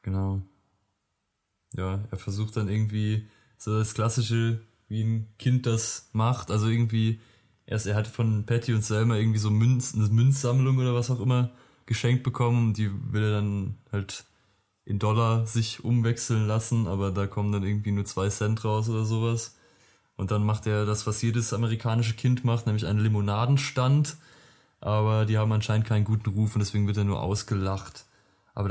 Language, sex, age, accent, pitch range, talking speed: German, male, 20-39, German, 105-115 Hz, 165 wpm